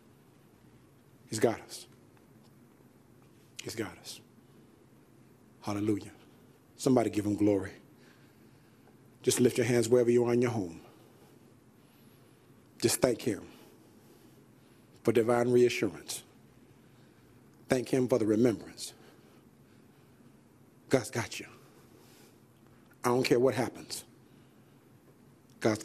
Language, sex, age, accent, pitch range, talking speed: English, male, 50-69, American, 115-135 Hz, 95 wpm